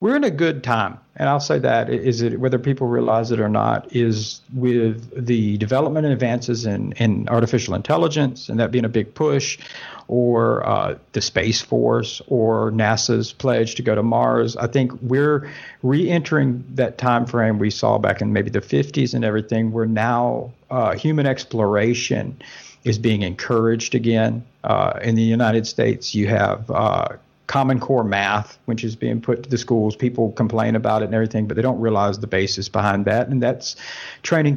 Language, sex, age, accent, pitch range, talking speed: English, male, 50-69, American, 110-130 Hz, 180 wpm